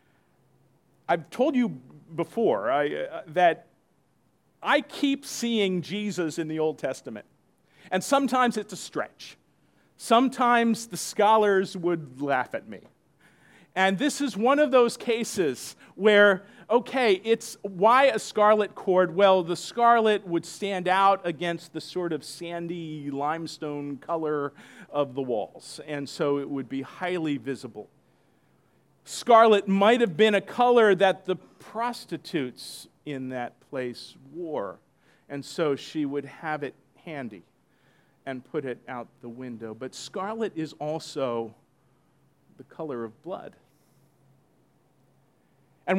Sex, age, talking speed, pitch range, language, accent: male, 50-69, 130 wpm, 155-220 Hz, English, American